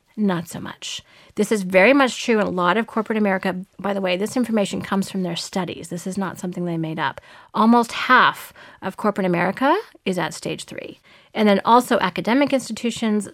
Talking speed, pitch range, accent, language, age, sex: 200 wpm, 190-240 Hz, American, English, 30-49, female